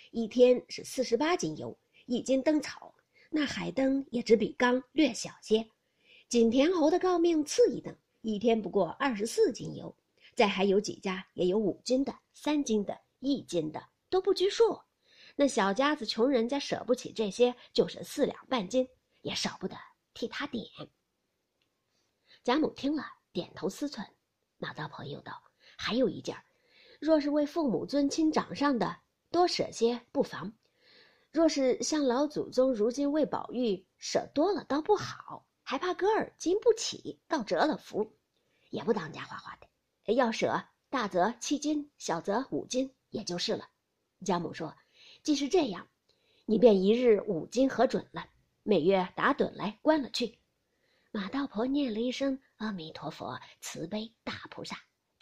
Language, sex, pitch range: Chinese, female, 220-295 Hz